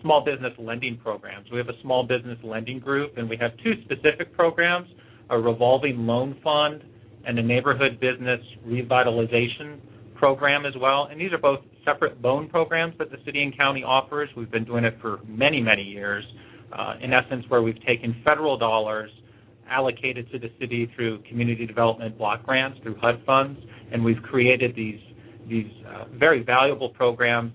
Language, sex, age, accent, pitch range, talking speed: English, male, 40-59, American, 115-130 Hz, 170 wpm